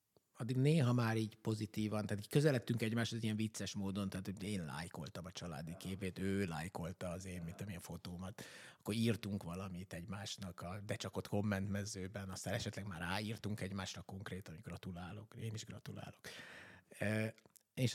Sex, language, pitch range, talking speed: male, Hungarian, 105-130 Hz, 160 wpm